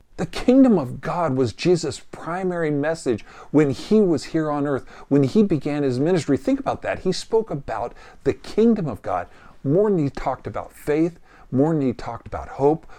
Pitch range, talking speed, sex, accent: 130-185 Hz, 190 wpm, male, American